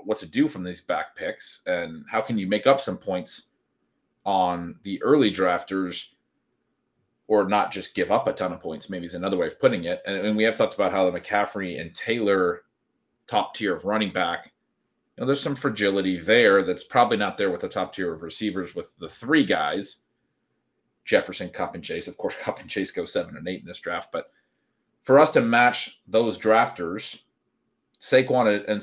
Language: English